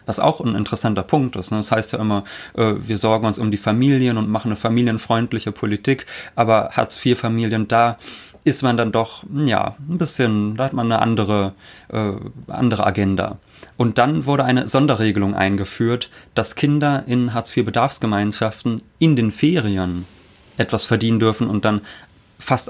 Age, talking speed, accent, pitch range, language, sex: 30-49, 150 wpm, German, 105-125 Hz, German, male